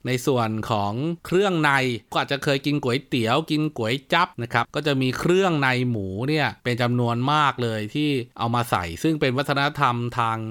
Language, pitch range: Thai, 110-145 Hz